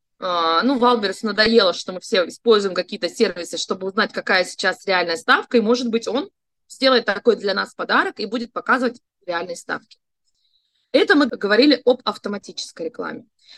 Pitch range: 210-260 Hz